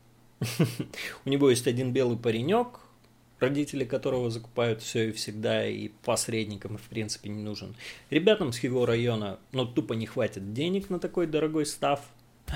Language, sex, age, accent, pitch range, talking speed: Russian, male, 30-49, native, 115-155 Hz, 150 wpm